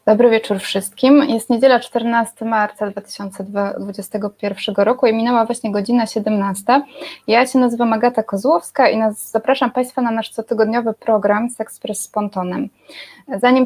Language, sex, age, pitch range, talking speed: Polish, female, 20-39, 210-245 Hz, 130 wpm